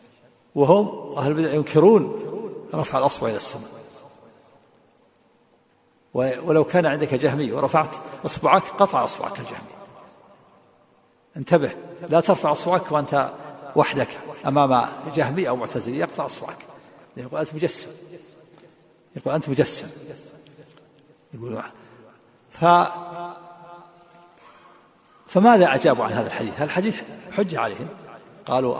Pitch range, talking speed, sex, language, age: 150-195 Hz, 95 wpm, male, Arabic, 50-69